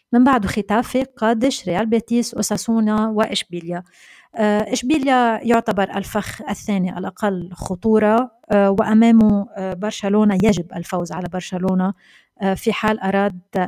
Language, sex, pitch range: Arabic, female, 190-225 Hz